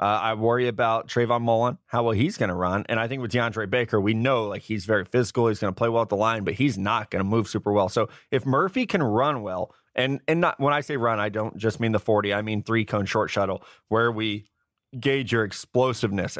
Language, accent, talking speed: English, American, 255 wpm